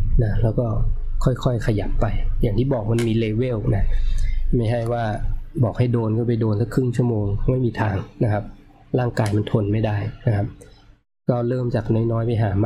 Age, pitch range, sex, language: 20-39, 105-120 Hz, male, Thai